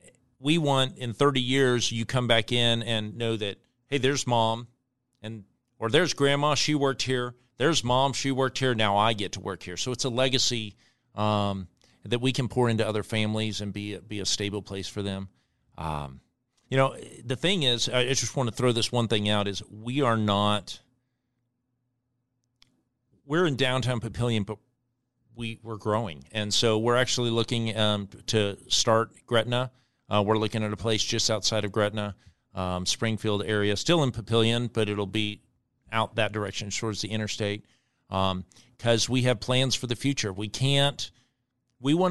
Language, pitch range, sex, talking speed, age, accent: English, 105-125 Hz, male, 185 wpm, 40-59, American